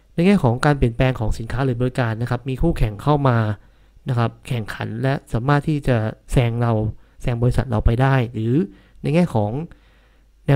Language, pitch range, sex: Thai, 125-160 Hz, male